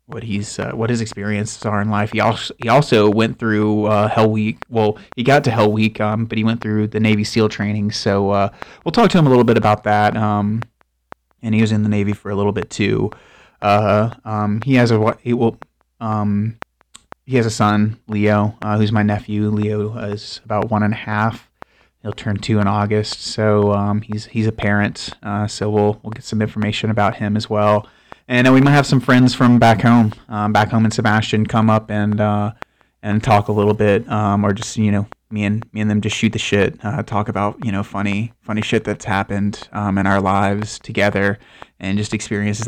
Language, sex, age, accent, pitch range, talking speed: English, male, 30-49, American, 105-110 Hz, 220 wpm